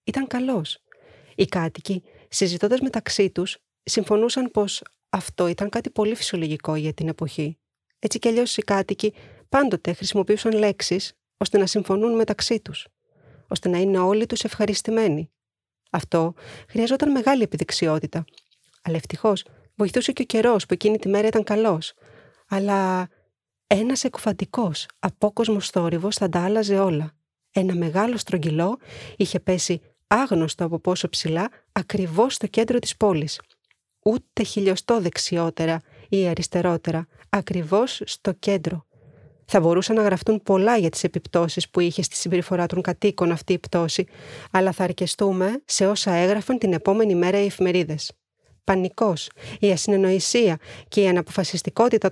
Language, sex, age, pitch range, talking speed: Greek, female, 30-49, 175-215 Hz, 135 wpm